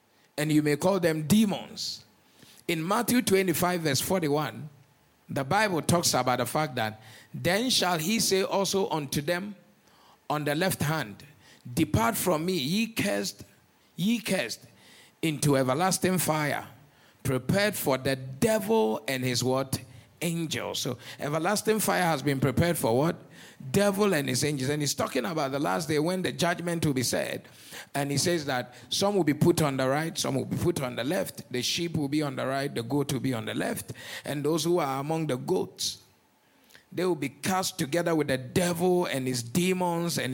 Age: 50-69